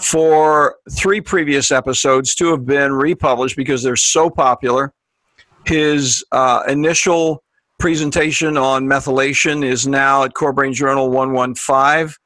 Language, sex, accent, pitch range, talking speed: English, male, American, 135-160 Hz, 115 wpm